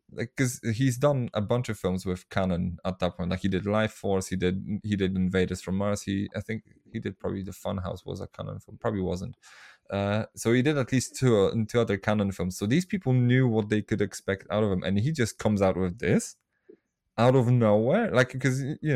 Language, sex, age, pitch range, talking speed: English, male, 20-39, 95-125 Hz, 235 wpm